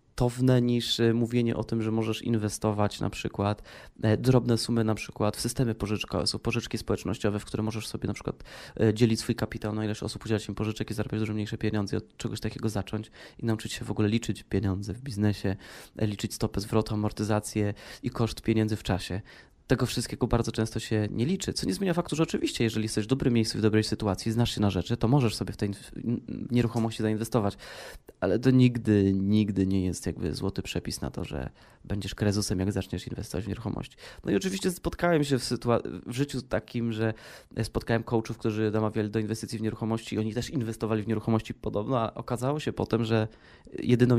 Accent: native